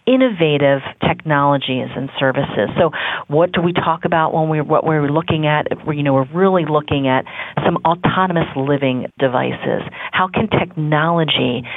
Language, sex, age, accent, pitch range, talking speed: English, female, 40-59, American, 135-160 Hz, 150 wpm